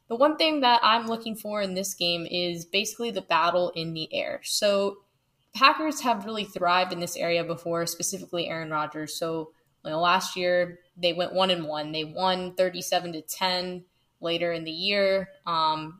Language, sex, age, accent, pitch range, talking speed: English, female, 10-29, American, 160-200 Hz, 175 wpm